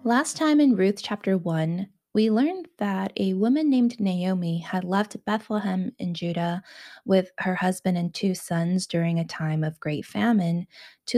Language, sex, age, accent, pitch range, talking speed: English, female, 20-39, American, 165-220 Hz, 165 wpm